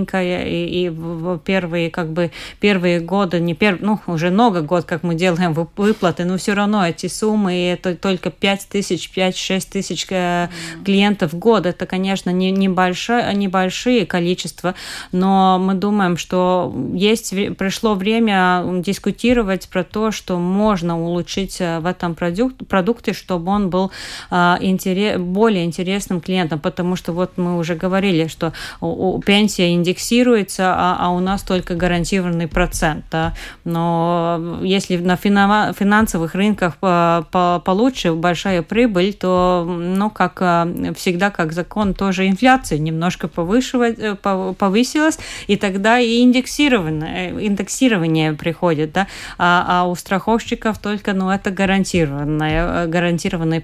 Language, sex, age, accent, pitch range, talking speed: Russian, female, 30-49, native, 175-200 Hz, 125 wpm